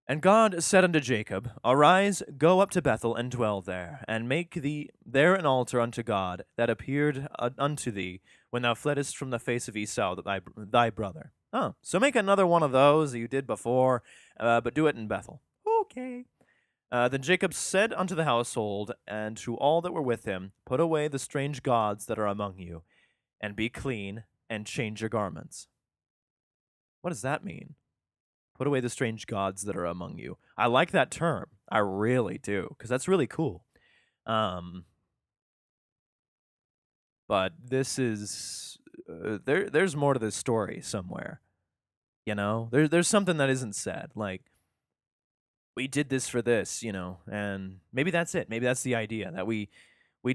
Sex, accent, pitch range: male, American, 105-145 Hz